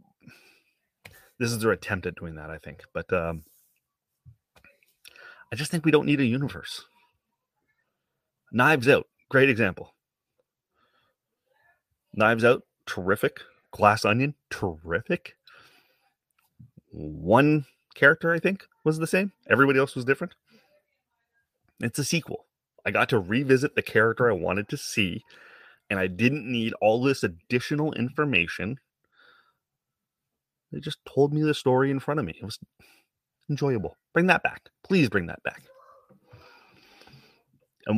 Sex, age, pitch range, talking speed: male, 30-49, 105-160 Hz, 130 wpm